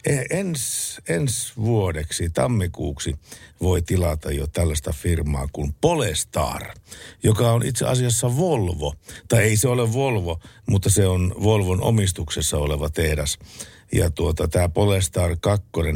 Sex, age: male, 60-79